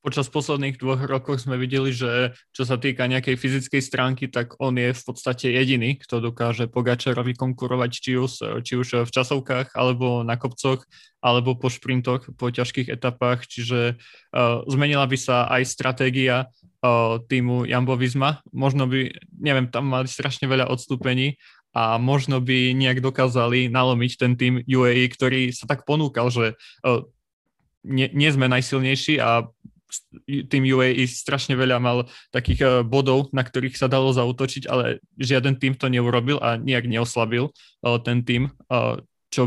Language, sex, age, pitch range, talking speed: Slovak, male, 20-39, 120-130 Hz, 150 wpm